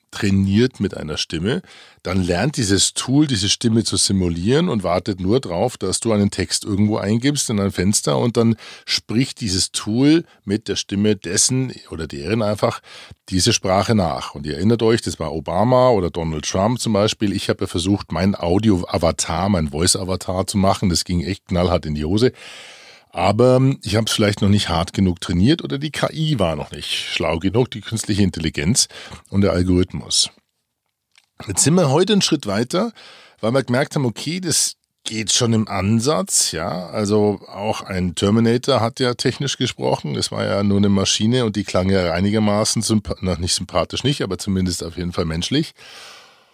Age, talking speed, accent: 40-59, 180 wpm, German